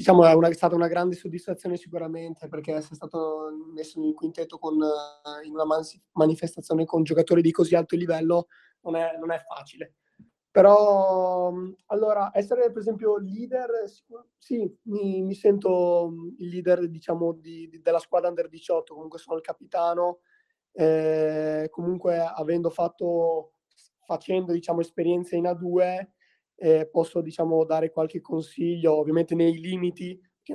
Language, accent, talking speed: Italian, native, 145 wpm